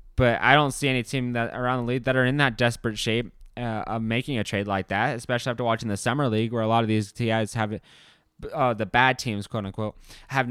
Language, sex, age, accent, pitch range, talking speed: English, male, 20-39, American, 105-125 Hz, 240 wpm